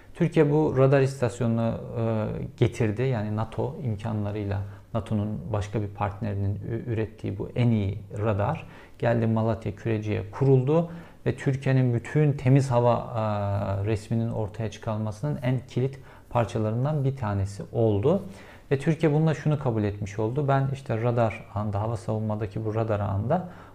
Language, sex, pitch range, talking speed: Turkish, male, 105-135 Hz, 130 wpm